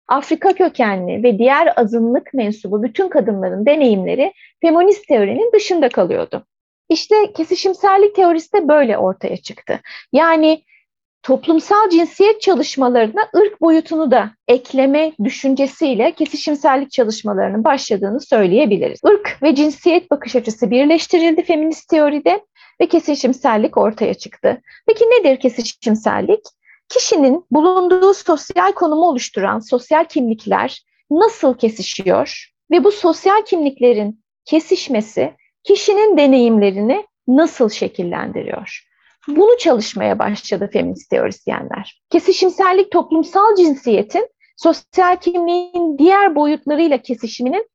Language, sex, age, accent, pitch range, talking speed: Turkish, female, 30-49, native, 250-370 Hz, 100 wpm